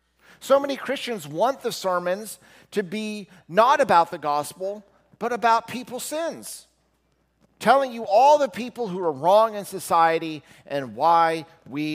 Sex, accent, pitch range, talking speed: male, American, 140-215 Hz, 145 wpm